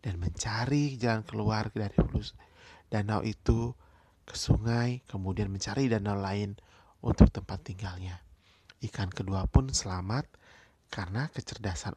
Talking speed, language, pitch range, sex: 110 wpm, Indonesian, 95-115 Hz, male